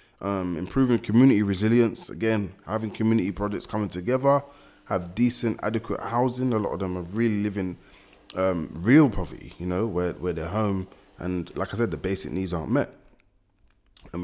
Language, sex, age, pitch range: English, male, 20-39, 90-110 Hz